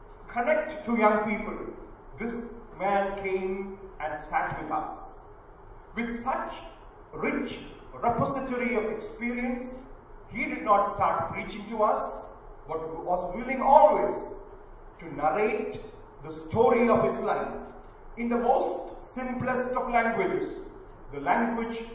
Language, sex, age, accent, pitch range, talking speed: English, male, 40-59, Indian, 215-260 Hz, 120 wpm